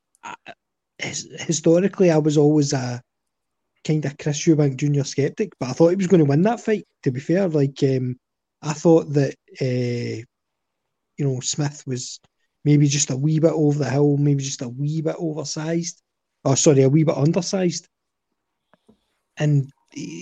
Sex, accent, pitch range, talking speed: male, British, 140-180 Hz, 170 wpm